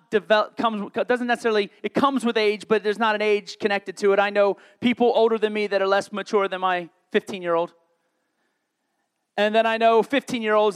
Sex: male